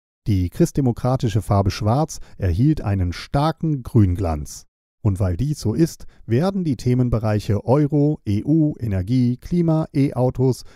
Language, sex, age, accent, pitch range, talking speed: German, male, 40-59, German, 100-130 Hz, 115 wpm